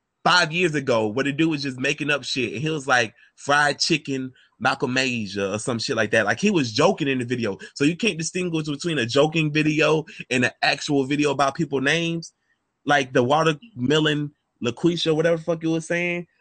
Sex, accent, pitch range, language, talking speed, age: male, American, 115-160 Hz, English, 200 wpm, 20-39